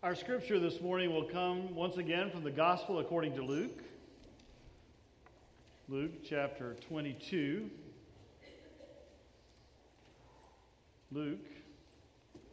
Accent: American